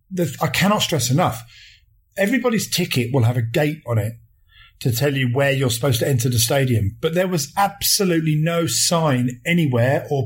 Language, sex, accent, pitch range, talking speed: English, male, British, 120-160 Hz, 175 wpm